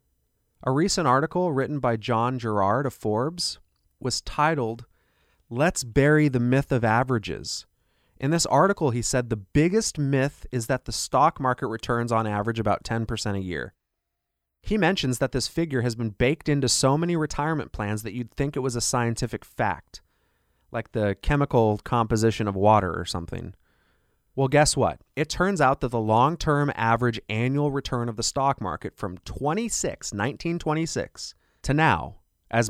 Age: 30-49